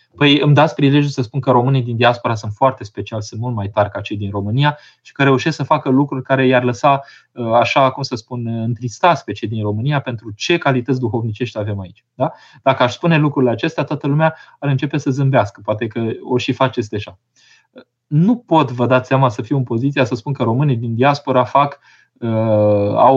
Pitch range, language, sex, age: 115-140 Hz, Romanian, male, 20-39